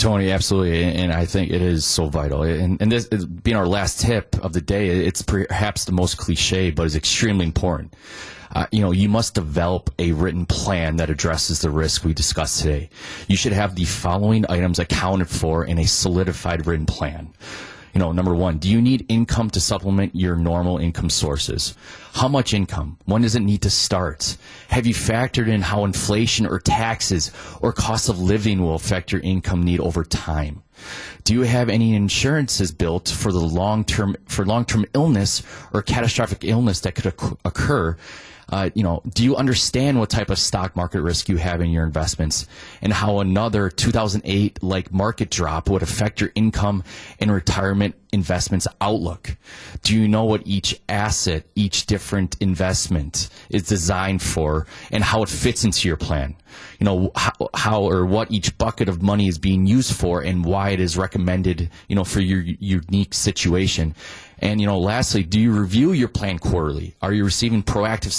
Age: 30-49